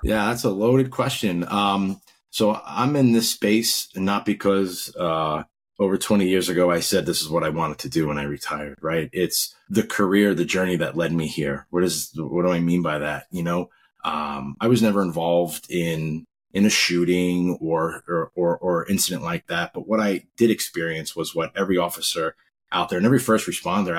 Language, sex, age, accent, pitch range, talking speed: English, male, 30-49, American, 80-100 Hz, 205 wpm